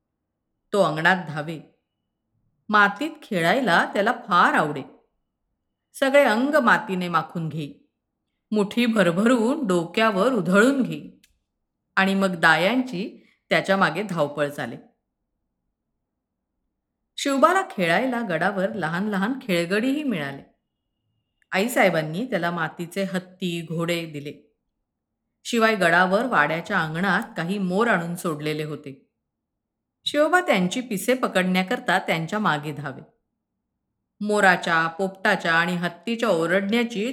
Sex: female